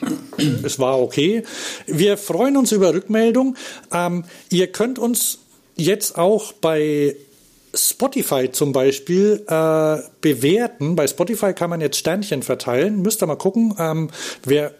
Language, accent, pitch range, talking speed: German, German, 135-200 Hz, 135 wpm